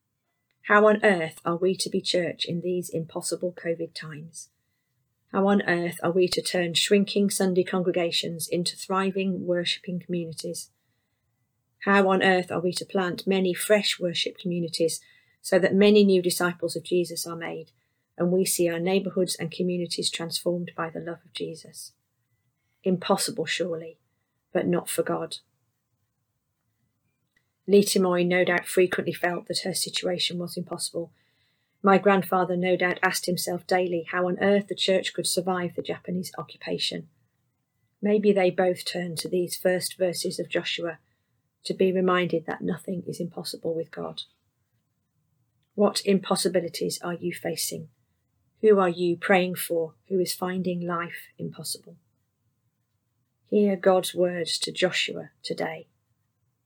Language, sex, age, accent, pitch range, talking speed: English, female, 40-59, British, 145-185 Hz, 140 wpm